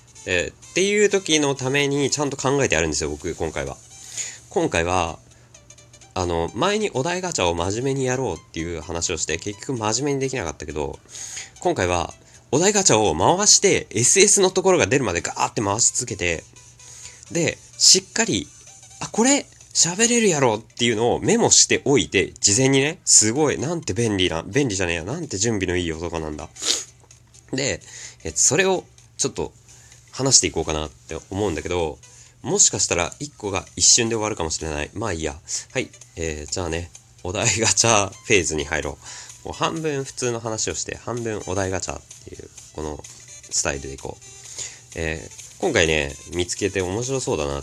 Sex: male